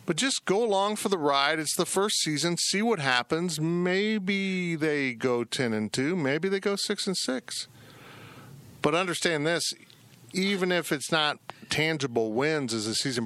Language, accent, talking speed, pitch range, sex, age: English, American, 170 wpm, 120-155 Hz, male, 50-69